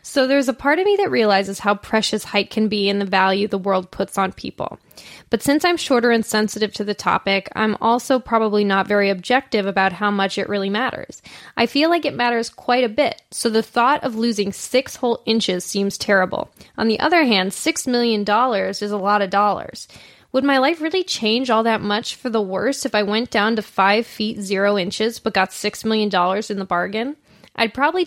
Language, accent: English, American